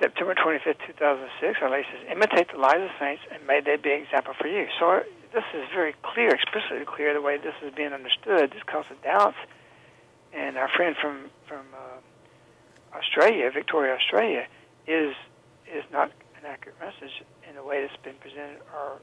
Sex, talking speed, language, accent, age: male, 185 wpm, English, American, 60-79